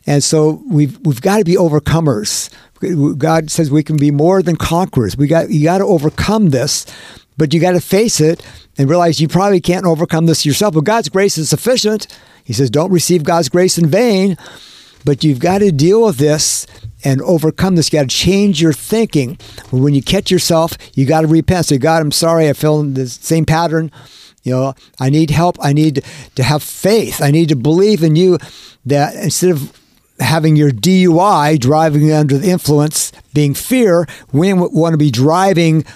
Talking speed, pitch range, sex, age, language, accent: 195 wpm, 145-175 Hz, male, 50-69, English, American